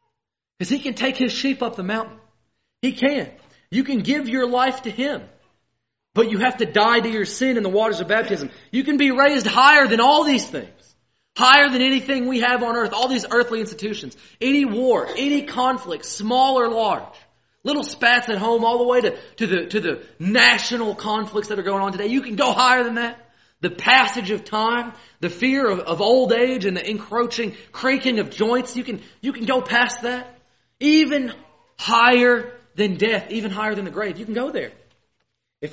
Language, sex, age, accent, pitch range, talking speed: English, male, 30-49, American, 205-260 Hz, 200 wpm